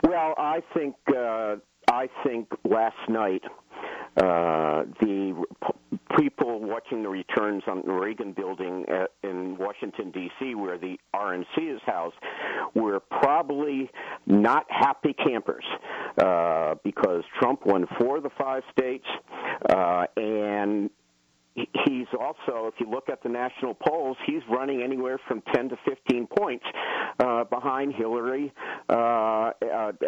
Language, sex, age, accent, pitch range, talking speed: English, male, 50-69, American, 105-135 Hz, 130 wpm